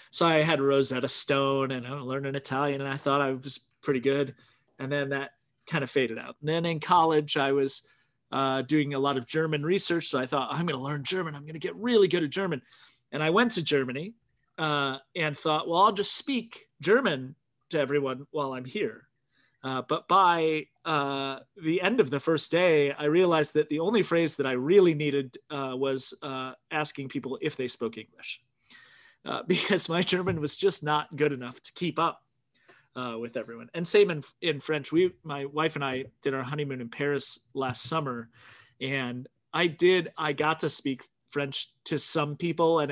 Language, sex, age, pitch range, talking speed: English, male, 30-49, 130-160 Hz, 205 wpm